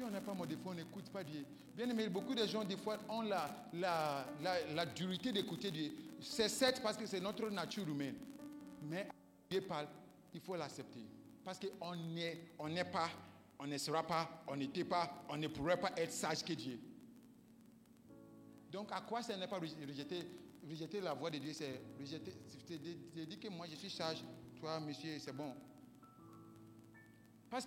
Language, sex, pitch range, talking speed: French, male, 160-225 Hz, 185 wpm